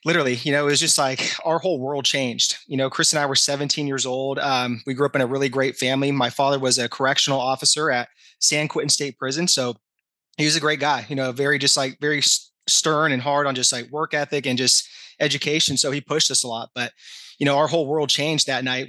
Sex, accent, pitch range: male, American, 130-150 Hz